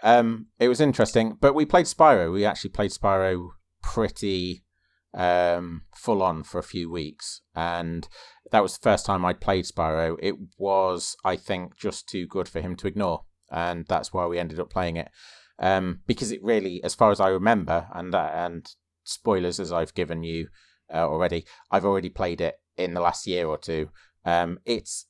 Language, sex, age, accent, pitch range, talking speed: English, male, 30-49, British, 80-95 Hz, 190 wpm